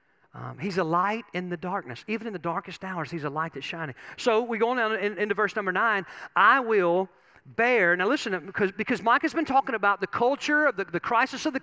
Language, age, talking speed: English, 40-59, 245 wpm